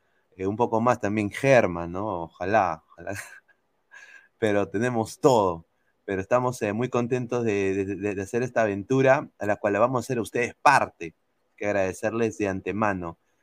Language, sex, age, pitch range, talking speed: Spanish, male, 30-49, 100-125 Hz, 155 wpm